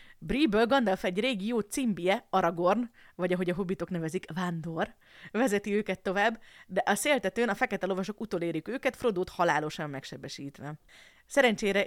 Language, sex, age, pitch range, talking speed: Hungarian, female, 30-49, 165-215 Hz, 140 wpm